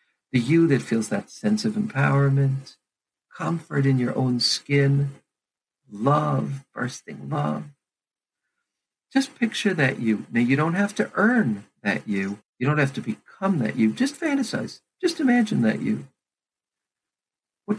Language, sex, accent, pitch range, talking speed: English, male, American, 120-180 Hz, 140 wpm